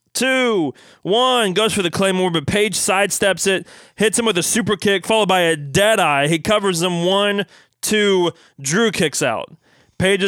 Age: 20-39